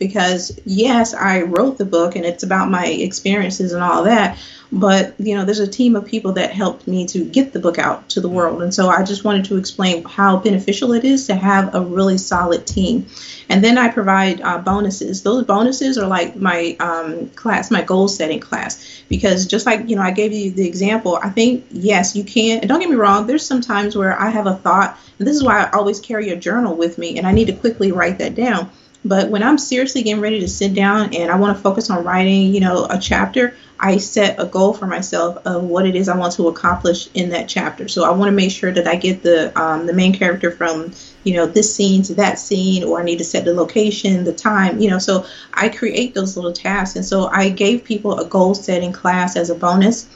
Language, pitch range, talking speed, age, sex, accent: English, 180-215 Hz, 240 wpm, 30-49, female, American